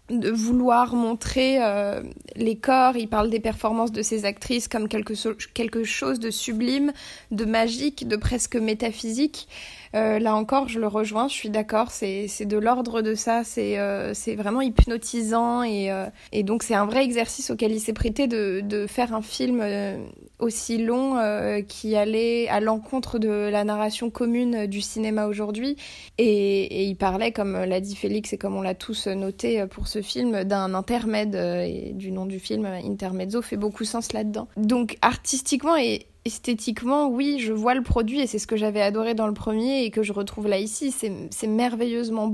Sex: female